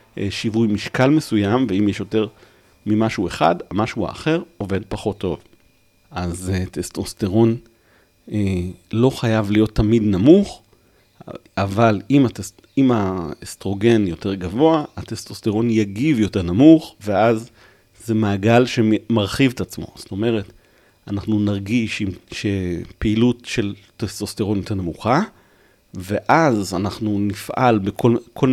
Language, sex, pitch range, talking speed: Hebrew, male, 100-125 Hz, 110 wpm